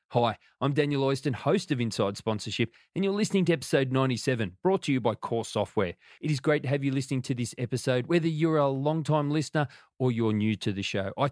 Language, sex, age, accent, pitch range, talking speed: English, male, 30-49, Australian, 115-155 Hz, 225 wpm